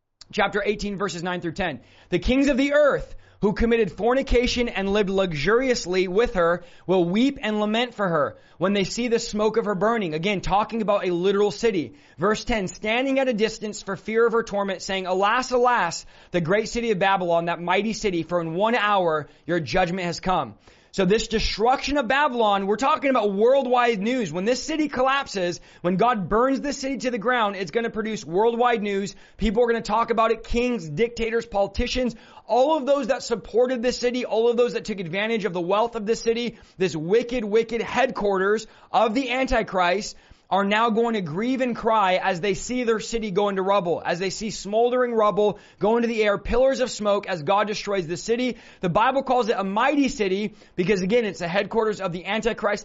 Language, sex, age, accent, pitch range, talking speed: English, male, 30-49, American, 195-240 Hz, 205 wpm